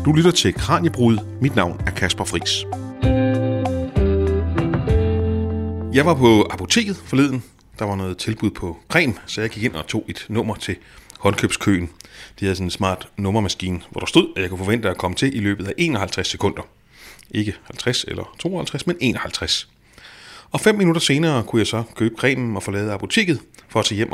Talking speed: 180 wpm